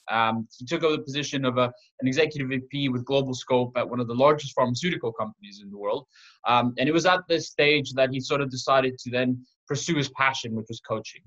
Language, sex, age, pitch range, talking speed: English, male, 20-39, 125-145 Hz, 230 wpm